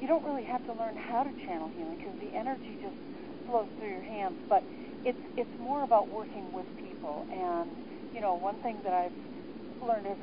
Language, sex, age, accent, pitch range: Japanese, female, 40-59, American, 235-320 Hz